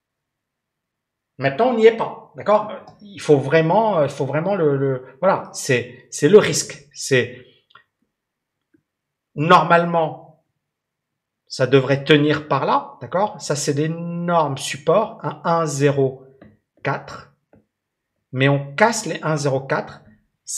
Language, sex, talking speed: French, male, 110 wpm